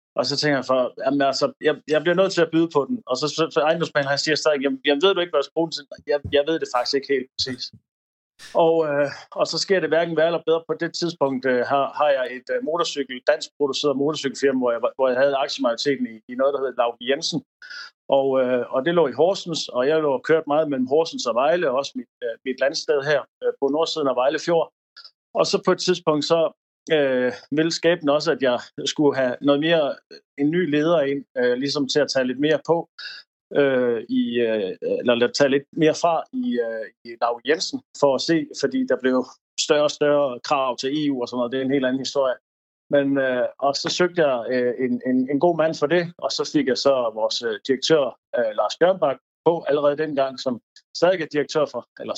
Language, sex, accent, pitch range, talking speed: Danish, male, native, 130-160 Hz, 225 wpm